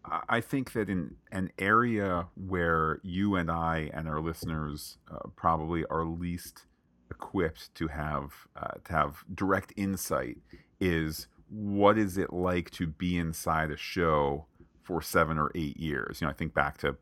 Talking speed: 160 wpm